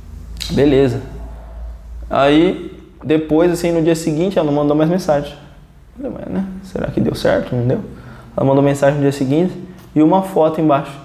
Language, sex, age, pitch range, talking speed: Portuguese, male, 20-39, 125-160 Hz, 170 wpm